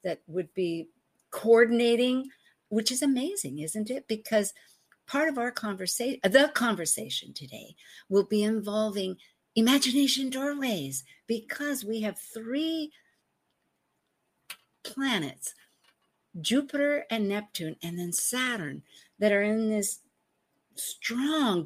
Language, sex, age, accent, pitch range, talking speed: English, female, 60-79, American, 185-255 Hz, 105 wpm